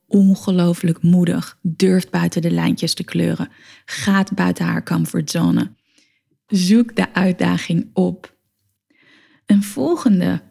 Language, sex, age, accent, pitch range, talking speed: Dutch, female, 20-39, Dutch, 175-210 Hz, 105 wpm